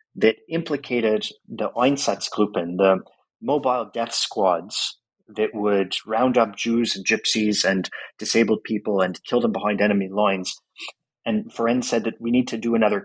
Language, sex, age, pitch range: English, male, 30-49, 95-115 Hz